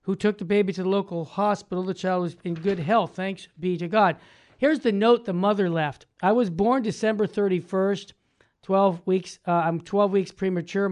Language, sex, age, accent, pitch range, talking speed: English, male, 50-69, American, 175-205 Hz, 200 wpm